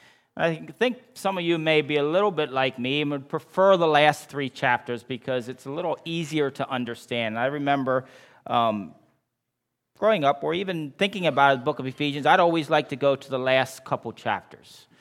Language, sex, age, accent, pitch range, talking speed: English, male, 40-59, American, 130-180 Hz, 195 wpm